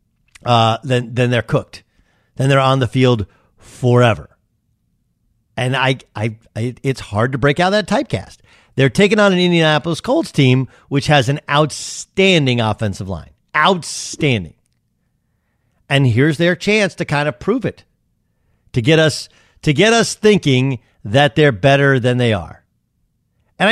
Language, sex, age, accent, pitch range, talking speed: English, male, 50-69, American, 120-160 Hz, 150 wpm